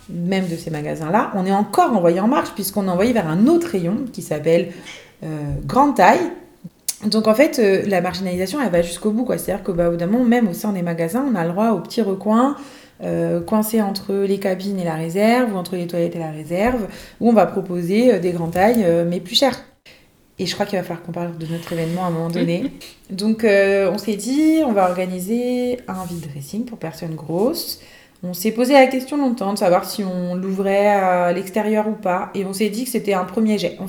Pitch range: 175-215 Hz